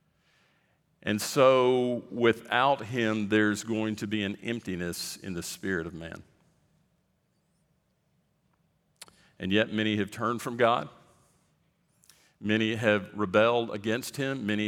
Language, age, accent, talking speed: English, 50-69, American, 115 wpm